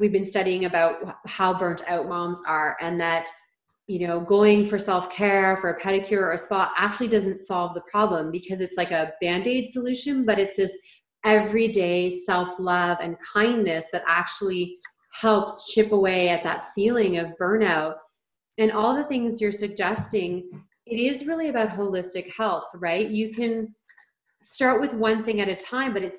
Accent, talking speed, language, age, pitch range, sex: American, 175 wpm, English, 30-49, 175-215 Hz, female